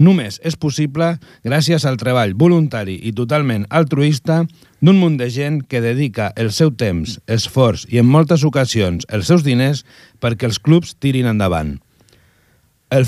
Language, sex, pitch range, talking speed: Italian, male, 110-150 Hz, 150 wpm